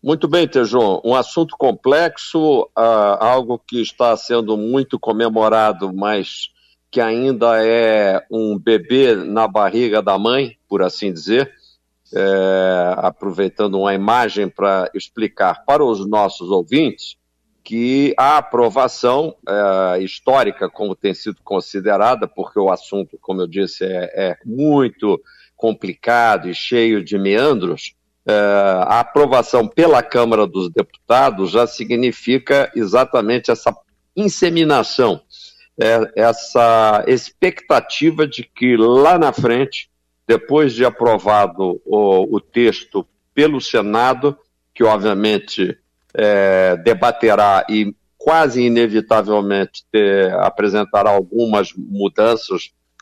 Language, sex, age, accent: Portuguese, male, 50-69, Brazilian